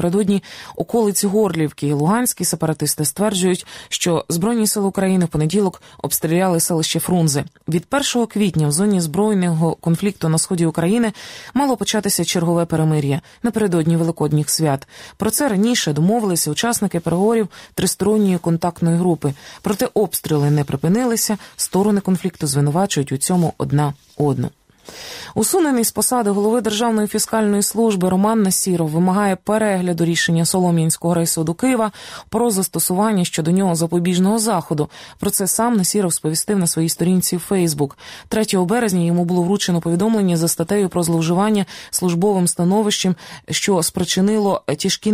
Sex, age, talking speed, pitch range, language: female, 20-39, 130 wpm, 165-210 Hz, Ukrainian